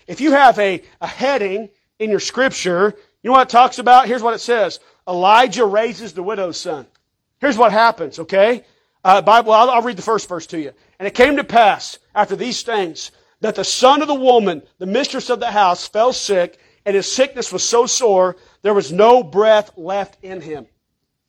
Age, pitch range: 40-59, 205-265 Hz